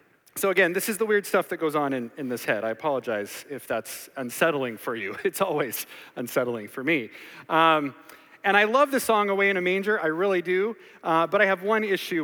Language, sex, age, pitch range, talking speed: English, male, 40-59, 145-190 Hz, 215 wpm